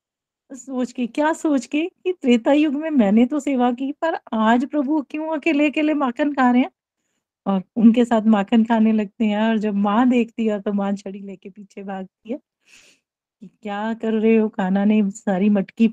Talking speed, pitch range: 190 wpm, 215-265 Hz